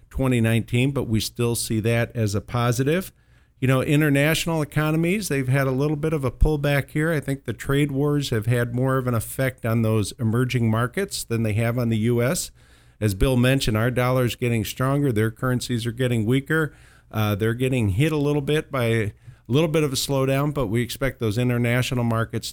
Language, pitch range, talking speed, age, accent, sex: English, 115-140 Hz, 200 wpm, 50-69, American, male